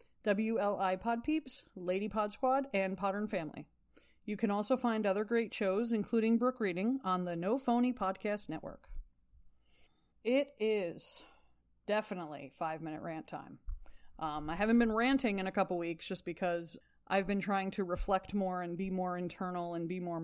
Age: 20-39